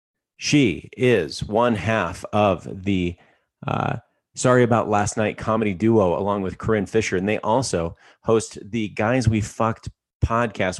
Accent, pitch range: American, 85-110 Hz